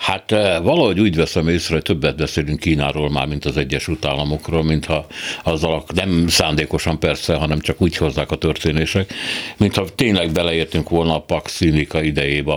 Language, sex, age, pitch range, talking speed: Hungarian, male, 60-79, 75-90 Hz, 160 wpm